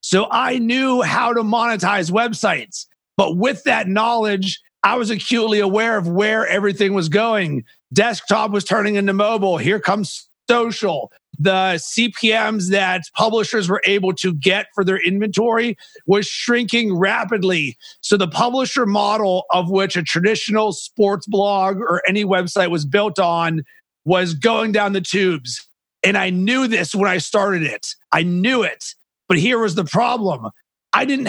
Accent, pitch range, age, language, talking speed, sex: American, 185-220 Hz, 40-59, English, 155 wpm, male